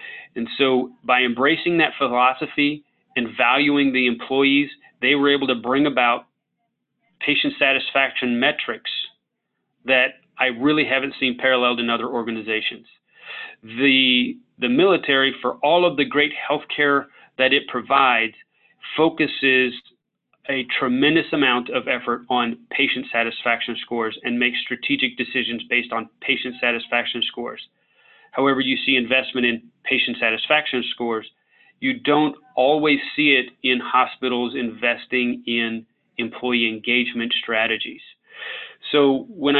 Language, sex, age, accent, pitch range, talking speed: English, male, 30-49, American, 120-145 Hz, 125 wpm